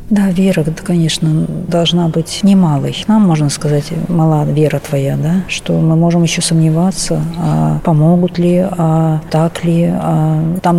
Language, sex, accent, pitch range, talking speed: Russian, female, native, 160-185 Hz, 150 wpm